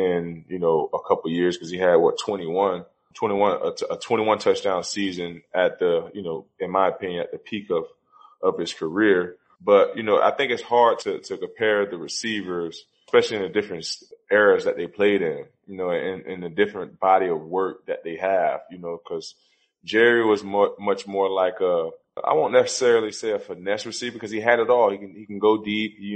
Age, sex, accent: 20-39, male, American